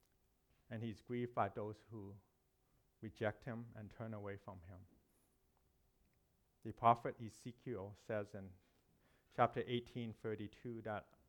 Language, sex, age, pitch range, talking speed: English, male, 50-69, 95-120 Hz, 115 wpm